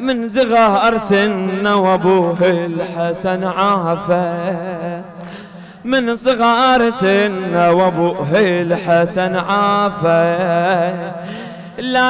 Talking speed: 60 wpm